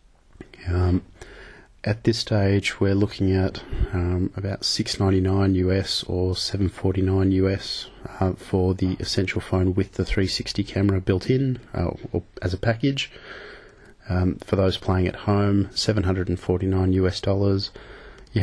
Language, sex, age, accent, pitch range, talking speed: English, male, 30-49, Australian, 90-100 Hz, 130 wpm